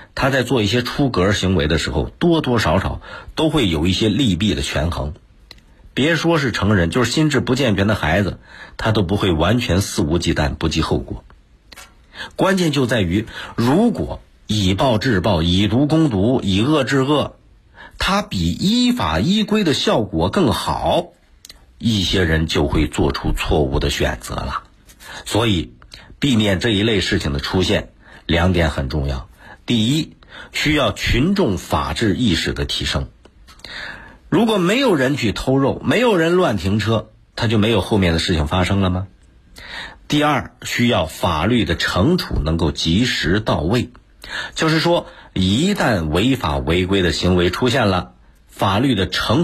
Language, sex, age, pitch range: Chinese, male, 50-69, 80-125 Hz